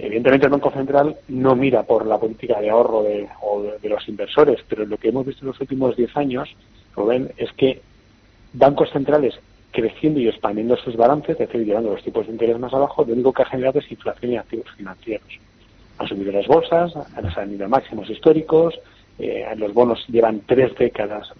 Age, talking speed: 40-59, 195 wpm